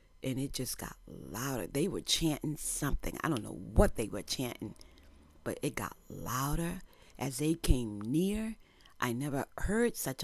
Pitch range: 100-160 Hz